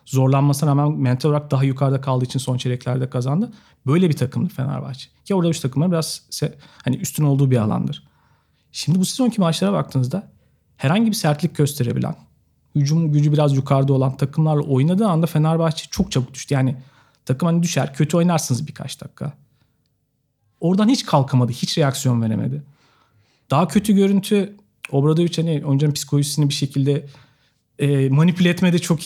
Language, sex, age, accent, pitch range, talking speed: Turkish, male, 40-59, native, 135-170 Hz, 150 wpm